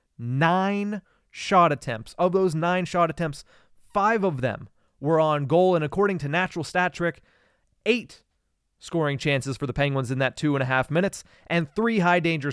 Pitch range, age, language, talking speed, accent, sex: 135-180 Hz, 30-49, English, 170 wpm, American, male